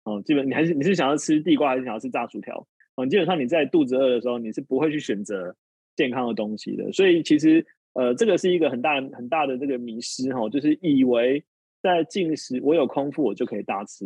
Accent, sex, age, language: native, male, 20-39, Chinese